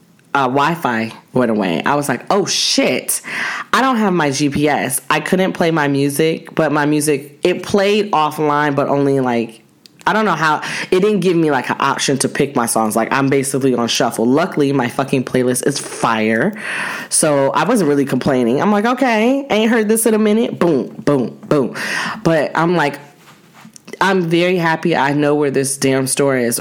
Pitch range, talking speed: 140-175 Hz, 190 wpm